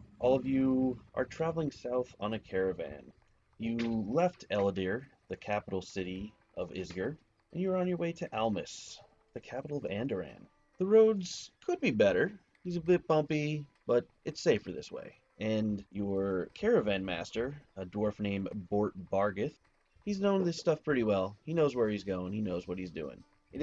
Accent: American